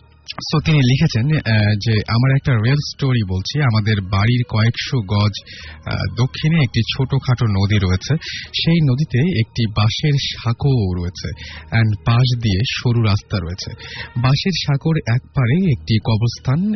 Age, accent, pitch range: 30-49, native, 105-130 Hz